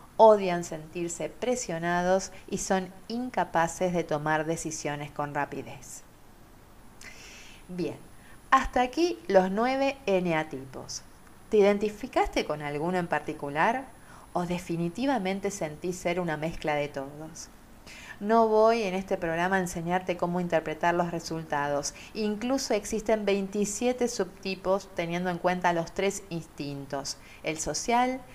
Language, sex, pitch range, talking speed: Spanish, female, 155-210 Hz, 115 wpm